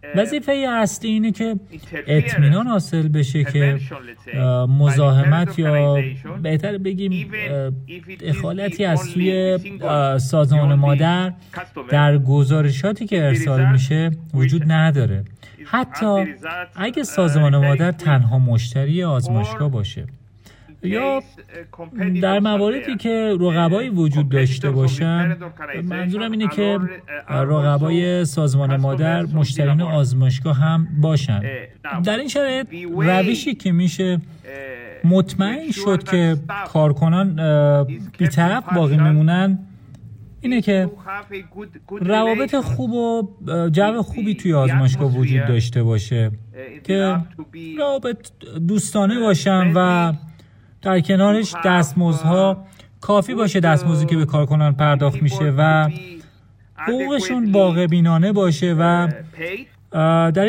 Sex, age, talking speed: male, 40-59, 100 wpm